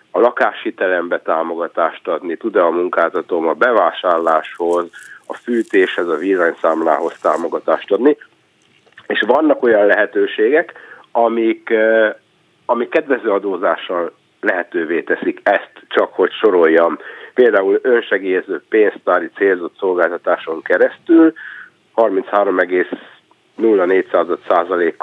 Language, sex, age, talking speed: Hungarian, male, 60-79, 85 wpm